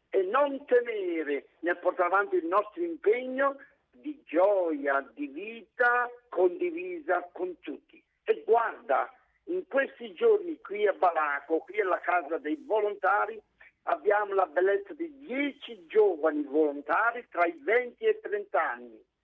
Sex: male